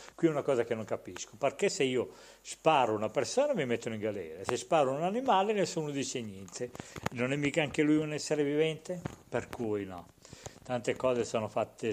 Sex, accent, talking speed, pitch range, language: male, native, 195 wpm, 120-180 Hz, Italian